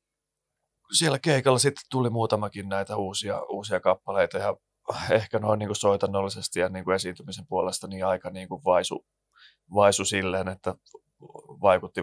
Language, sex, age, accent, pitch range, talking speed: Finnish, male, 30-49, native, 95-110 Hz, 135 wpm